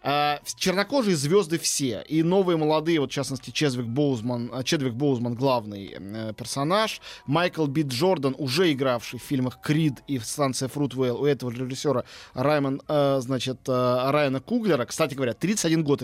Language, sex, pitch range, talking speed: Russian, male, 130-165 Hz, 155 wpm